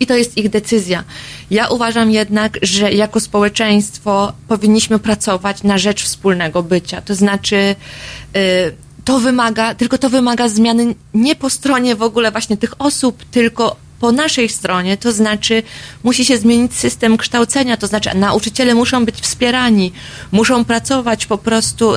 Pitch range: 205-235 Hz